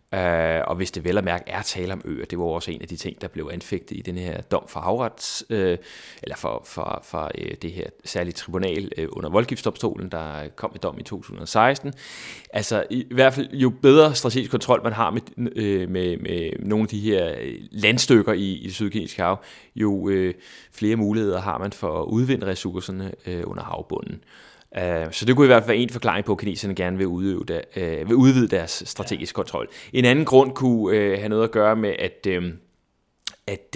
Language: Danish